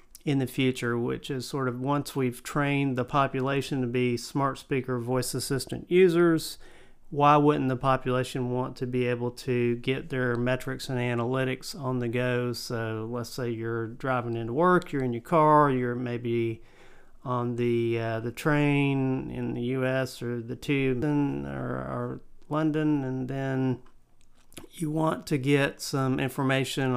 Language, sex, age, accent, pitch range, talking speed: English, male, 40-59, American, 125-150 Hz, 160 wpm